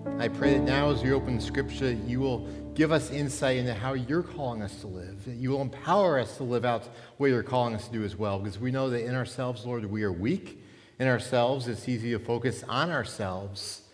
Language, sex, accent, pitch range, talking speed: English, male, American, 110-155 Hz, 235 wpm